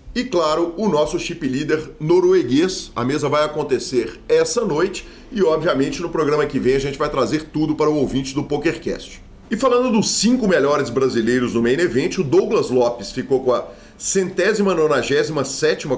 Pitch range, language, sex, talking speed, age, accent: 135-200 Hz, Portuguese, male, 175 wpm, 40-59, Brazilian